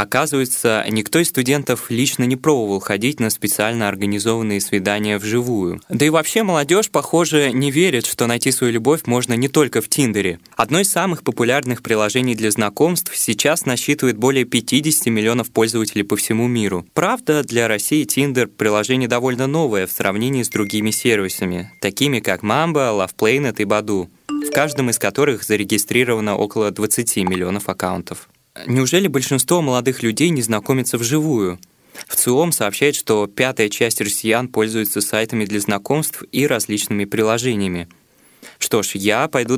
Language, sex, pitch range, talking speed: Russian, male, 105-140 Hz, 150 wpm